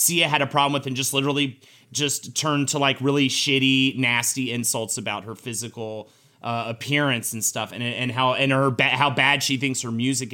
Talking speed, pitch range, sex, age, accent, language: 205 wpm, 135-200 Hz, male, 30-49, American, English